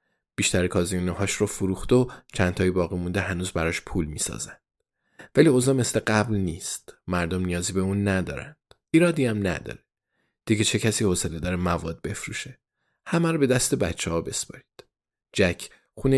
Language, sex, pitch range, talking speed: Persian, male, 90-110 Hz, 150 wpm